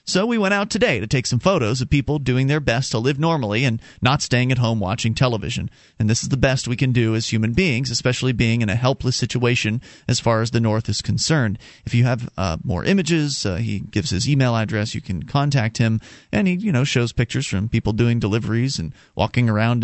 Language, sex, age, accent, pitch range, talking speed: English, male, 30-49, American, 110-135 Hz, 235 wpm